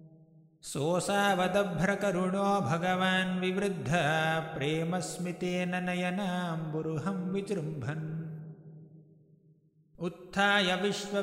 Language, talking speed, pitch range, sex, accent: English, 80 wpm, 160-185 Hz, male, Indian